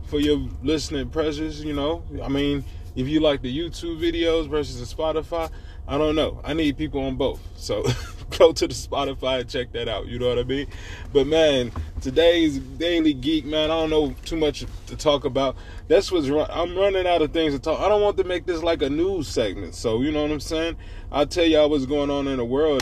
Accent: American